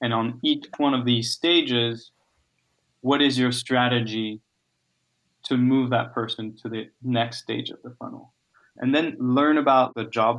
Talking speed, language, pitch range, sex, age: 160 wpm, English, 115-135 Hz, male, 20-39